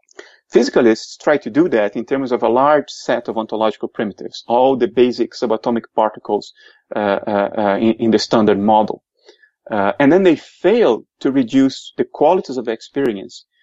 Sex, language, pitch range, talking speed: male, English, 110-155 Hz, 165 wpm